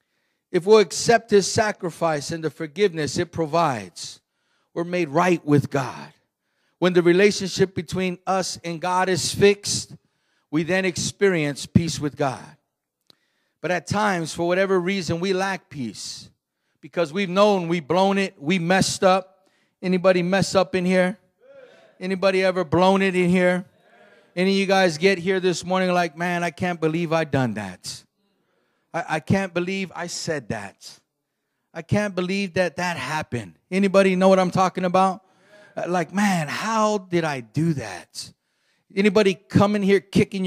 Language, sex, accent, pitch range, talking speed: English, male, American, 165-195 Hz, 155 wpm